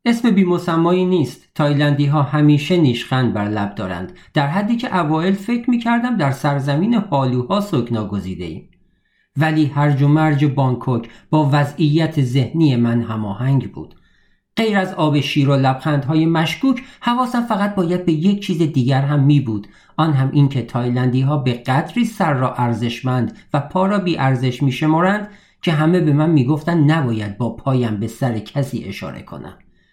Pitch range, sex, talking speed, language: 120-165 Hz, male, 160 wpm, Persian